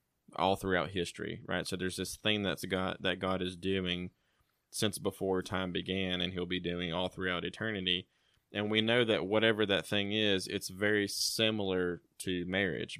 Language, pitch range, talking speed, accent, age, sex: English, 90-100 Hz, 165 wpm, American, 20-39, male